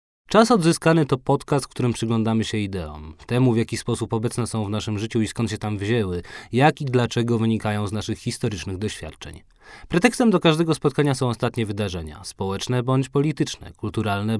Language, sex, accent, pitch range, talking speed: Polish, male, native, 105-145 Hz, 175 wpm